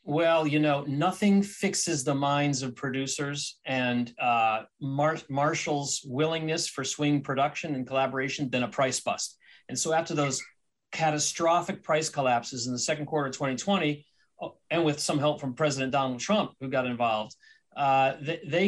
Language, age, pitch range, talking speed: English, 40-59, 135-165 Hz, 155 wpm